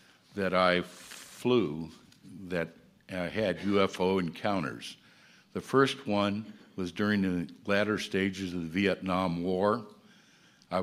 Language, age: Swedish, 60-79